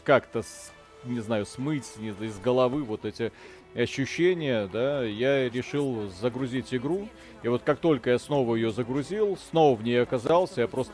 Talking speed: 155 wpm